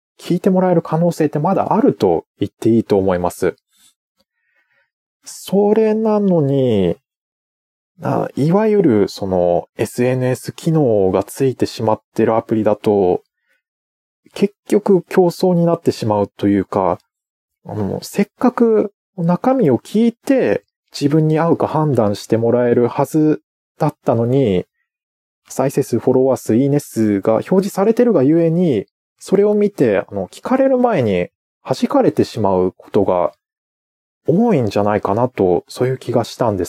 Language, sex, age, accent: Japanese, male, 20-39, native